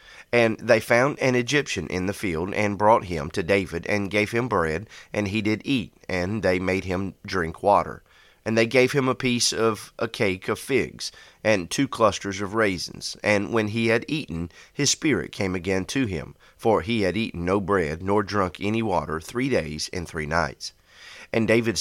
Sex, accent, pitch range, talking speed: male, American, 90-115 Hz, 195 wpm